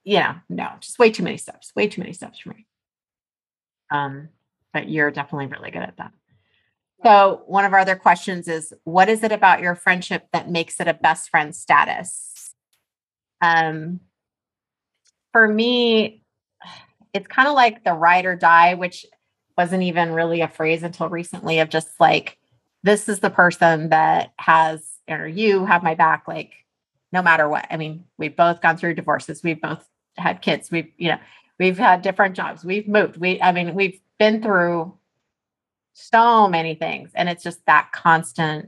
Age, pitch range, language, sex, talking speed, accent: 30-49, 160-190 Hz, English, female, 175 wpm, American